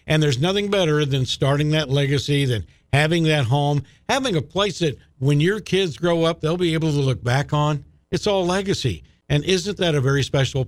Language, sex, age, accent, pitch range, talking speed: English, male, 50-69, American, 135-175 Hz, 210 wpm